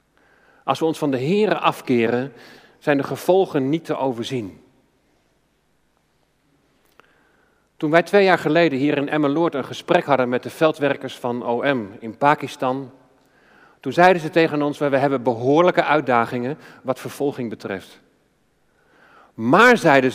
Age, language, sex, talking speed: 40-59, Dutch, male, 135 wpm